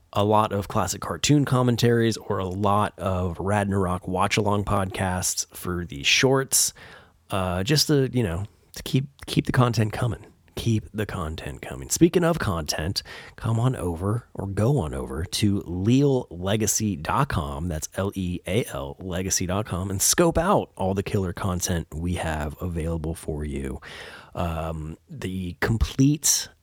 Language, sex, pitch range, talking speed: English, male, 85-115 Hz, 135 wpm